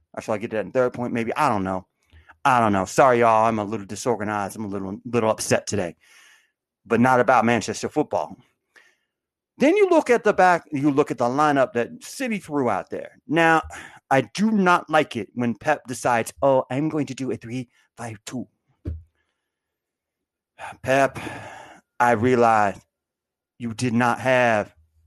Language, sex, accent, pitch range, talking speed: English, male, American, 115-165 Hz, 170 wpm